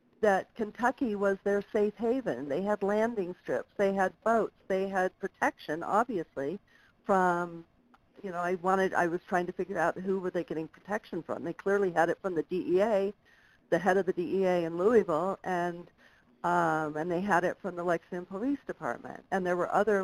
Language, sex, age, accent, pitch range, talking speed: English, female, 60-79, American, 175-200 Hz, 190 wpm